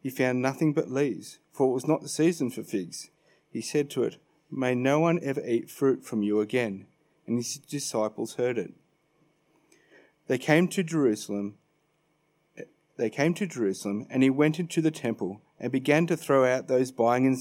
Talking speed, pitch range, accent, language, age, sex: 185 wpm, 115-145 Hz, Australian, English, 40-59, male